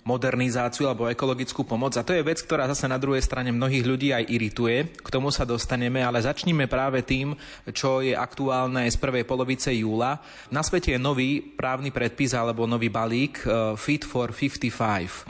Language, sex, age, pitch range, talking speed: Slovak, male, 30-49, 120-135 Hz, 170 wpm